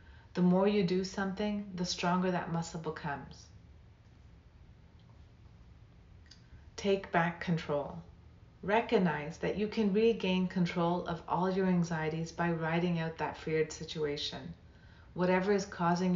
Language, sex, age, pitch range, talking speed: English, female, 40-59, 150-185 Hz, 120 wpm